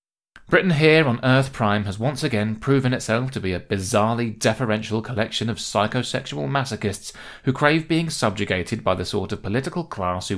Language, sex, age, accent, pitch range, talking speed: English, male, 30-49, British, 95-125 Hz, 175 wpm